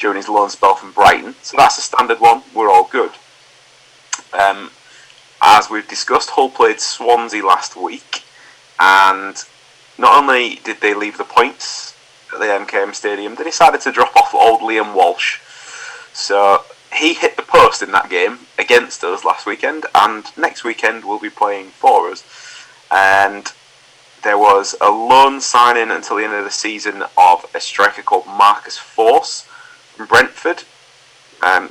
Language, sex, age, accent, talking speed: English, male, 30-49, British, 160 wpm